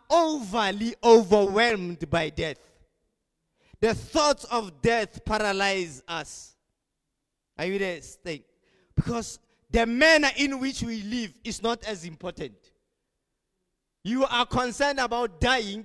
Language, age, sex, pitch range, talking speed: English, 30-49, male, 185-235 Hz, 115 wpm